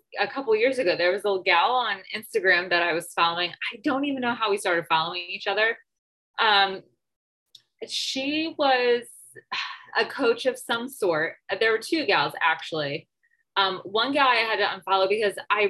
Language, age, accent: English, 20-39, American